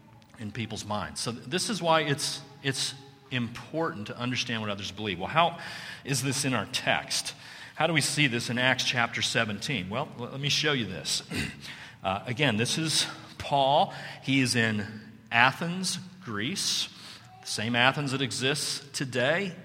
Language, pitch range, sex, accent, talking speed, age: English, 120-150 Hz, male, American, 160 wpm, 40-59